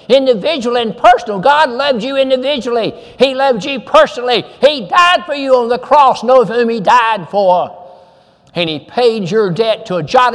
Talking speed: 180 wpm